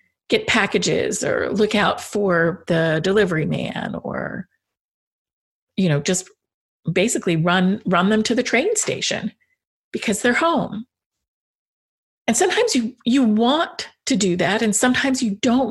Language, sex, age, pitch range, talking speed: English, female, 50-69, 180-235 Hz, 140 wpm